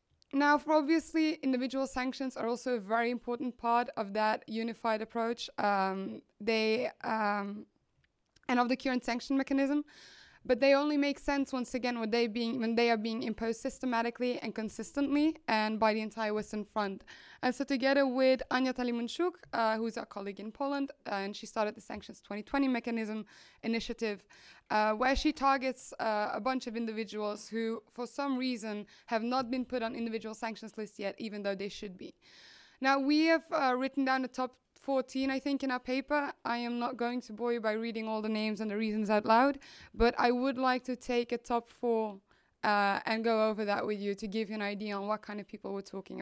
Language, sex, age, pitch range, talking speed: English, female, 20-39, 220-265 Hz, 195 wpm